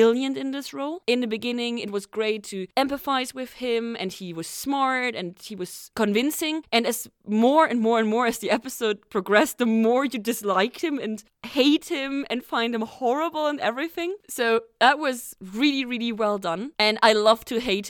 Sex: female